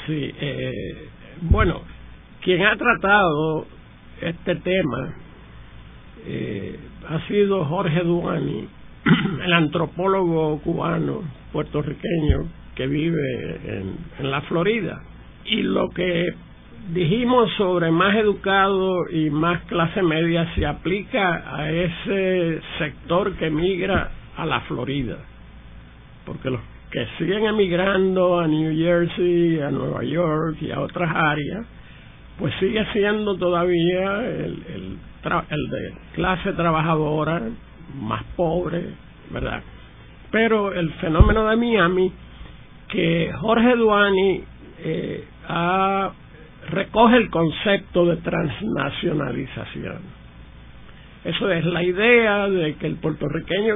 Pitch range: 155-190 Hz